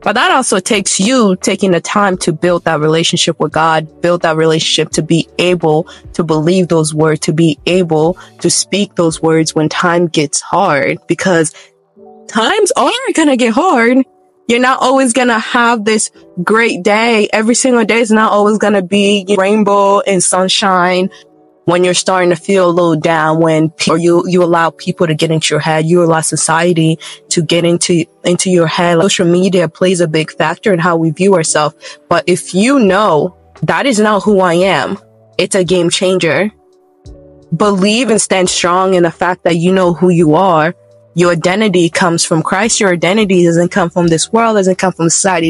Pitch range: 165-205 Hz